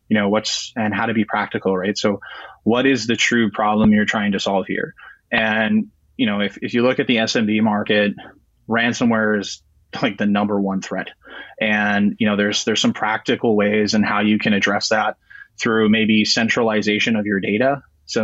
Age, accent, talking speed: 20-39, American, 195 wpm